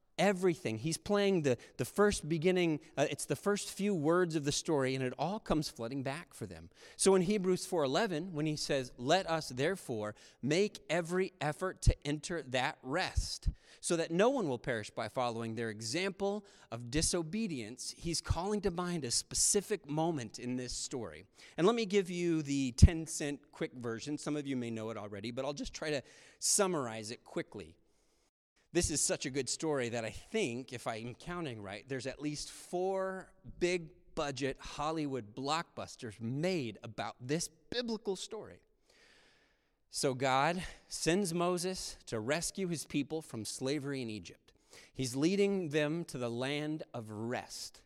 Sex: male